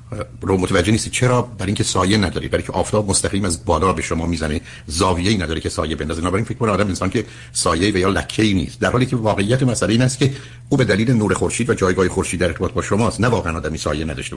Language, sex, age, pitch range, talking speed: Persian, male, 50-69, 90-120 Hz, 255 wpm